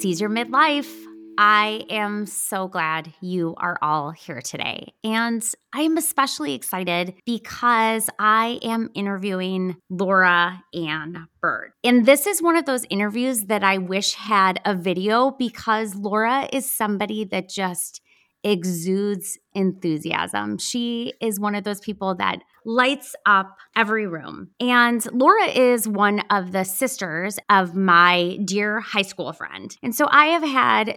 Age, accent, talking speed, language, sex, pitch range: 20-39, American, 145 wpm, English, female, 190-245 Hz